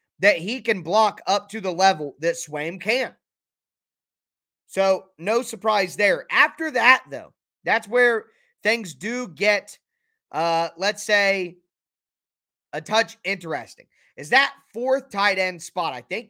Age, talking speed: 30-49, 135 wpm